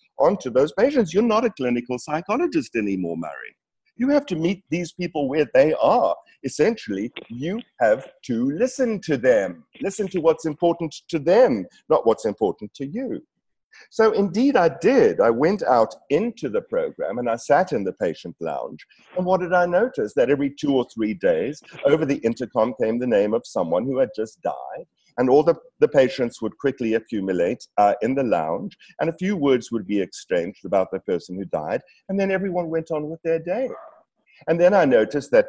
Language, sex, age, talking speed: English, male, 50-69, 195 wpm